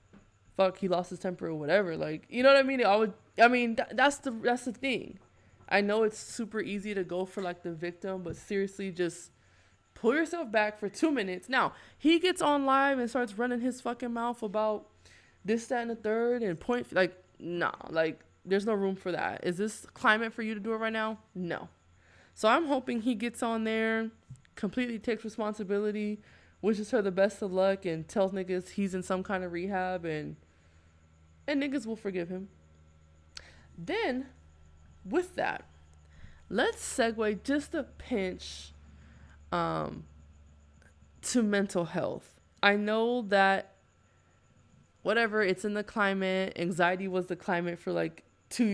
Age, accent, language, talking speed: 20-39, American, English, 170 wpm